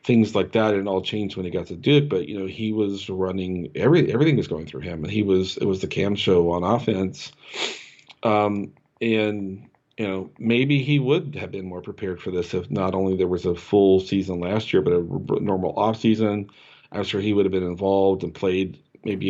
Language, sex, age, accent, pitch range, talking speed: English, male, 40-59, American, 95-110 Hz, 220 wpm